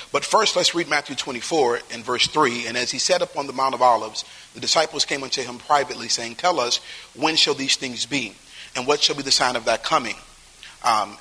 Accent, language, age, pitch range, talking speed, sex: American, English, 40-59, 130-165 Hz, 225 wpm, male